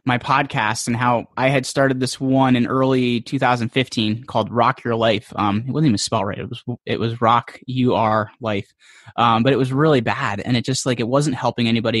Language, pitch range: English, 120-145 Hz